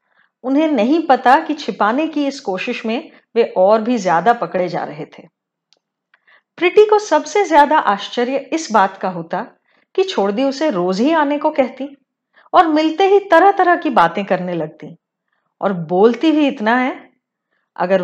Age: 30-49